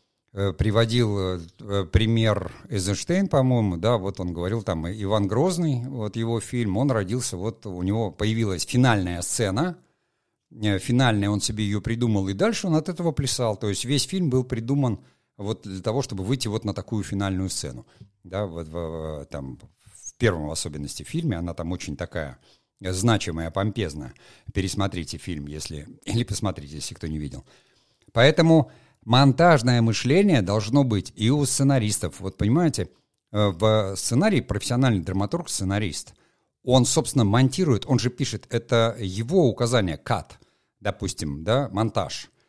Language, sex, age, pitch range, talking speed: Russian, male, 50-69, 95-125 Hz, 135 wpm